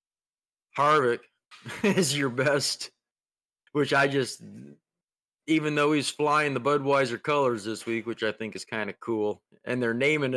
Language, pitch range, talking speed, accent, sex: English, 120-155 Hz, 150 wpm, American, male